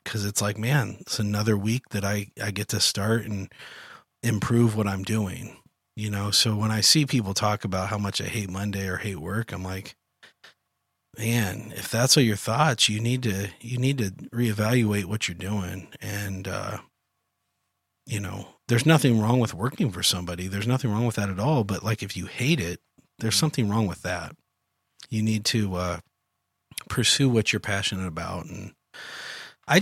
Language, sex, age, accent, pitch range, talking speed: English, male, 40-59, American, 100-120 Hz, 185 wpm